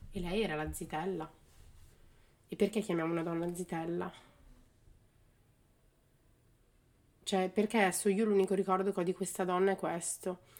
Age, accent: 30-49, native